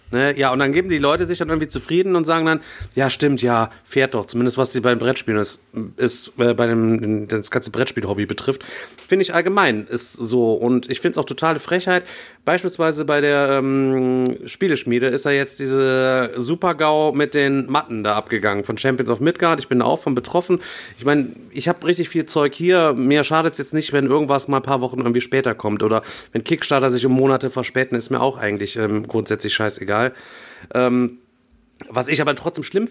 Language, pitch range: German, 125-160 Hz